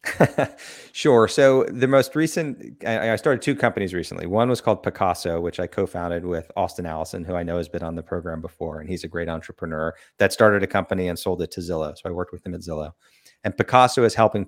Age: 30-49